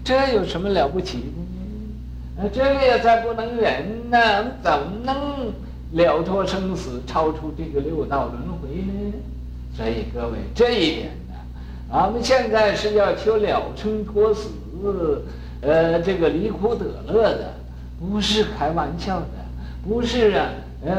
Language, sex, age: Chinese, male, 60-79